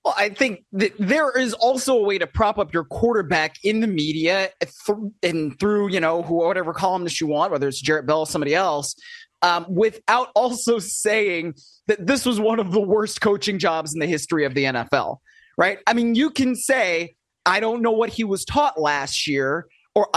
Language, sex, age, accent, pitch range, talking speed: English, male, 30-49, American, 165-215 Hz, 200 wpm